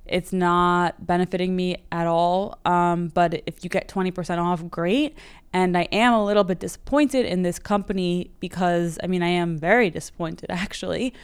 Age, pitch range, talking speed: 20-39, 170-200 Hz, 170 wpm